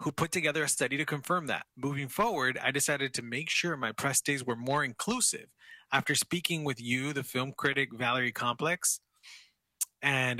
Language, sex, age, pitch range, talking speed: English, male, 20-39, 125-150 Hz, 180 wpm